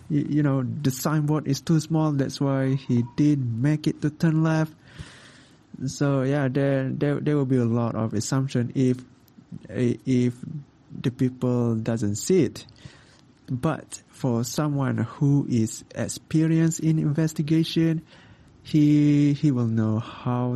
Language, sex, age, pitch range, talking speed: English, male, 20-39, 120-145 Hz, 135 wpm